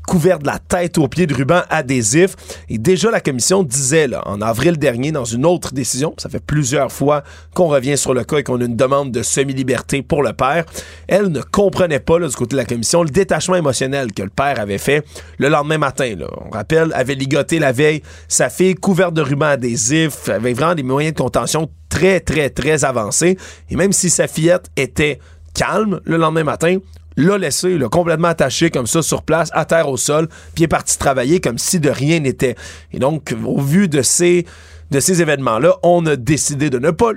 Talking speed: 215 wpm